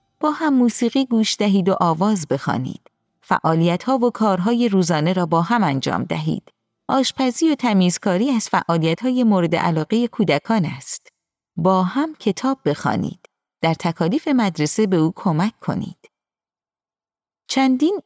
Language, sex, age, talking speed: Persian, female, 30-49, 125 wpm